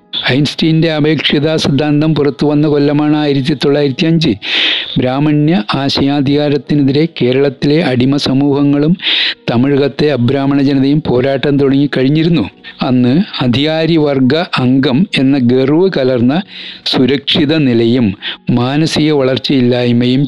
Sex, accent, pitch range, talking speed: male, native, 125-150 Hz, 85 wpm